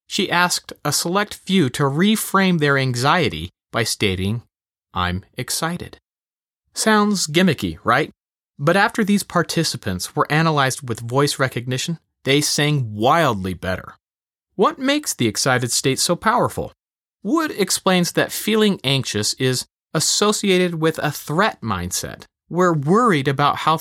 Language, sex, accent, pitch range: English, male, American, 130-195 Hz